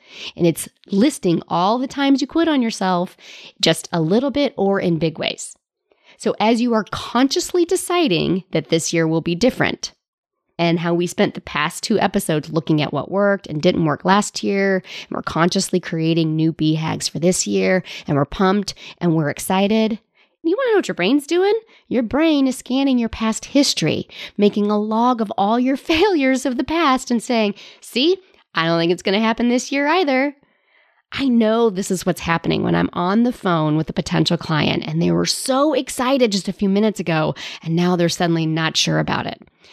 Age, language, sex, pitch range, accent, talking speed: 30-49, English, female, 170-270 Hz, American, 200 wpm